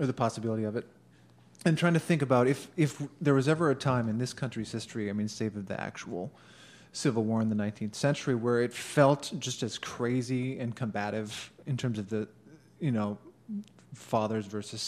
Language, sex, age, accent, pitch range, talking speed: English, male, 30-49, American, 110-135 Hz, 195 wpm